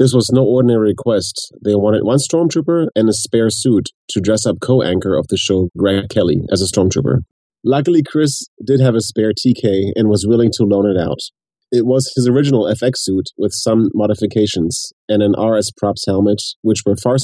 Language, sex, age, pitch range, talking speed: English, male, 30-49, 100-125 Hz, 195 wpm